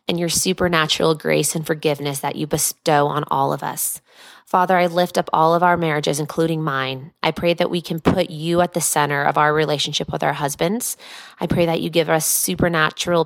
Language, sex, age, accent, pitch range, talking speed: English, female, 20-39, American, 155-185 Hz, 210 wpm